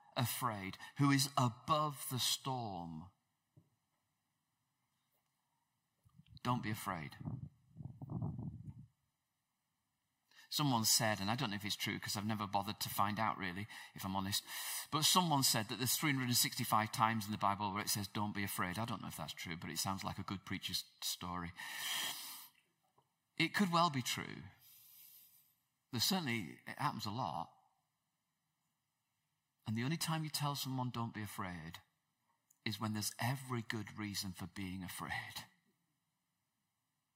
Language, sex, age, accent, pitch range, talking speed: English, male, 40-59, British, 105-140 Hz, 145 wpm